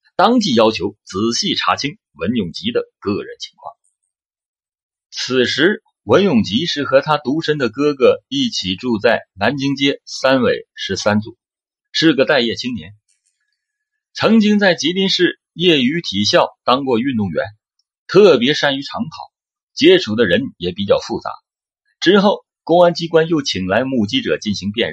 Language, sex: Chinese, male